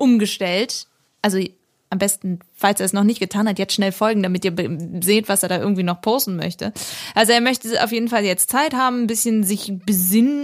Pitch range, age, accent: 190-240 Hz, 20-39, German